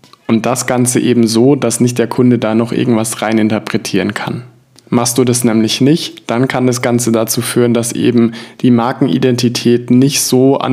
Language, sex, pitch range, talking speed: German, male, 115-135 Hz, 185 wpm